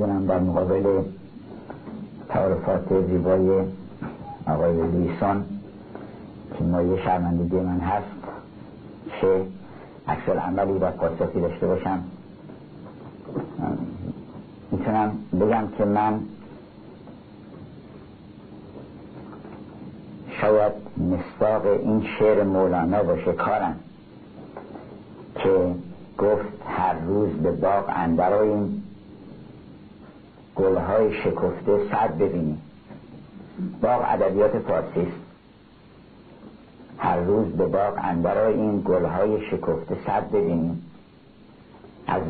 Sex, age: male, 60-79